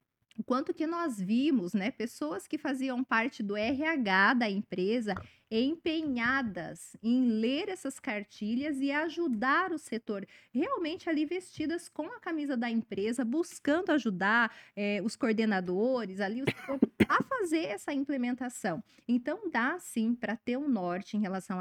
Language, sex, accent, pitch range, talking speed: Portuguese, female, Brazilian, 220-310 Hz, 135 wpm